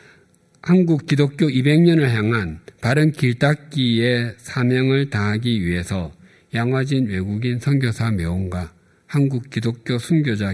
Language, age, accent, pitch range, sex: Korean, 50-69, native, 100-140 Hz, male